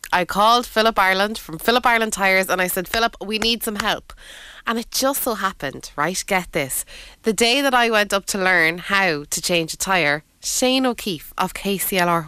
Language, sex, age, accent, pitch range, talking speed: English, female, 20-39, Irish, 180-240 Hz, 200 wpm